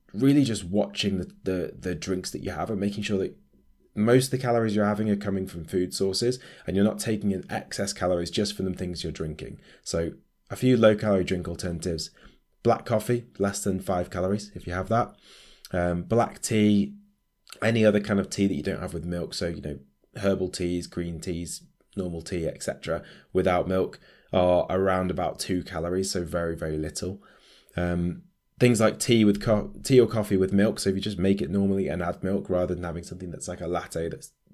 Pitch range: 90-105 Hz